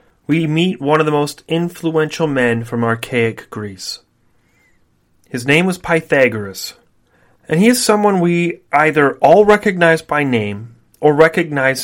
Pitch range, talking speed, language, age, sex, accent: 115-155 Hz, 135 wpm, English, 30-49, male, American